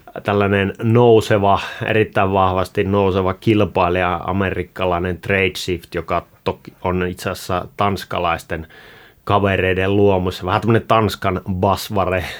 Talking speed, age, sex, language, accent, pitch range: 90 wpm, 30-49, male, Finnish, native, 90-105 Hz